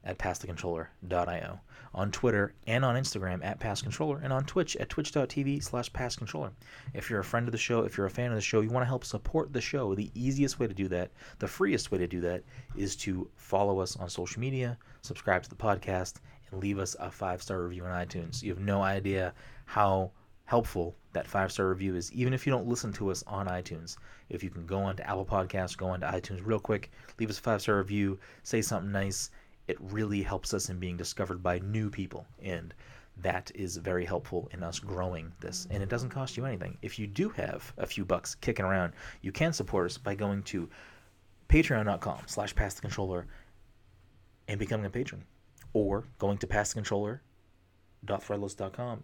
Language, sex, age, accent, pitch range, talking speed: English, male, 30-49, American, 90-120 Hz, 195 wpm